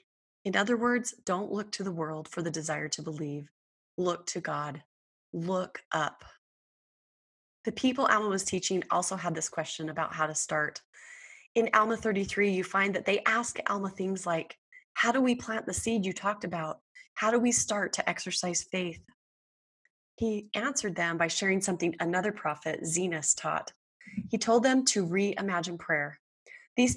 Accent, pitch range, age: American, 170-225 Hz, 20-39